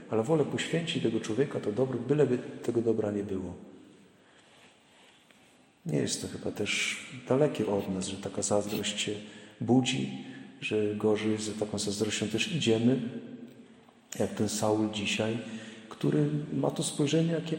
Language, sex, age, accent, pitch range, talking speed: Polish, male, 40-59, native, 105-145 Hz, 140 wpm